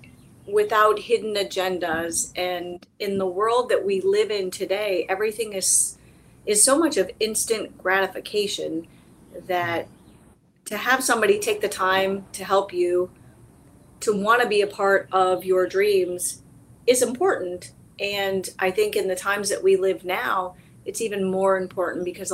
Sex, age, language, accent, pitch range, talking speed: female, 30-49, English, American, 185-225 Hz, 150 wpm